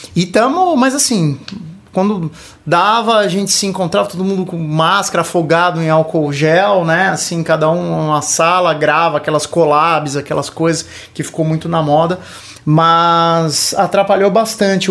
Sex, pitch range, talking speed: male, 145-175 Hz, 150 wpm